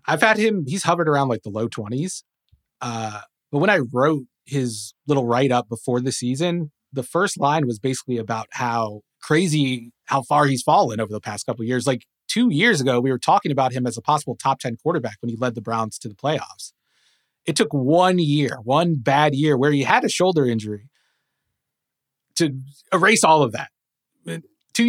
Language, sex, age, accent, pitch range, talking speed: English, male, 30-49, American, 125-160 Hz, 200 wpm